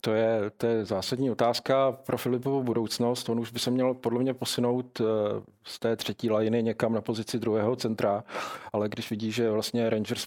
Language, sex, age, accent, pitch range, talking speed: Czech, male, 40-59, native, 110-120 Hz, 185 wpm